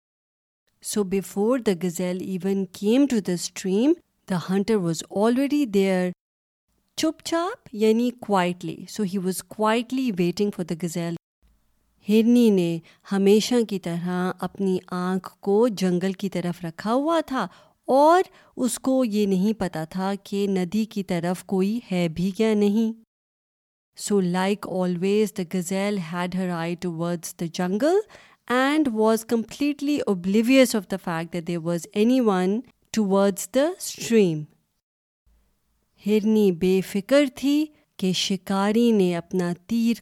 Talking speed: 130 wpm